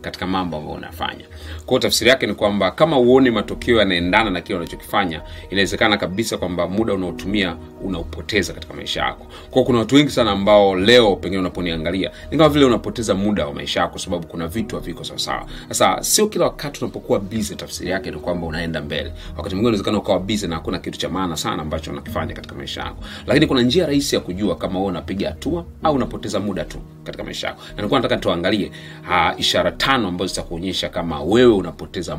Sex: male